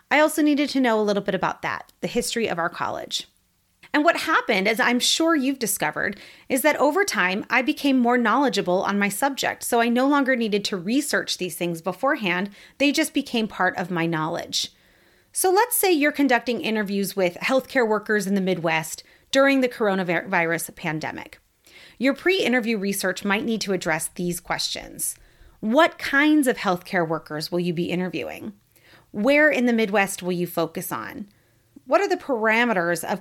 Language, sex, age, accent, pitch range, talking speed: English, female, 30-49, American, 180-265 Hz, 175 wpm